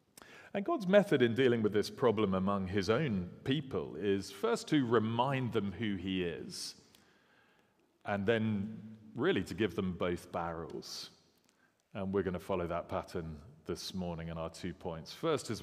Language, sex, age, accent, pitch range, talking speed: English, male, 40-59, British, 95-120 Hz, 165 wpm